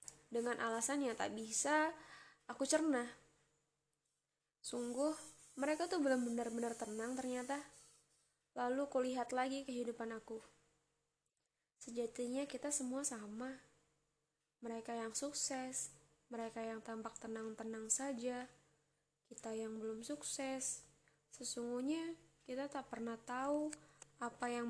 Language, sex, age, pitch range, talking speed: Indonesian, female, 10-29, 205-255 Hz, 100 wpm